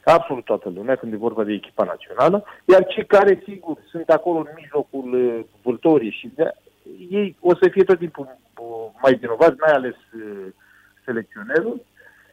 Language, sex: Romanian, male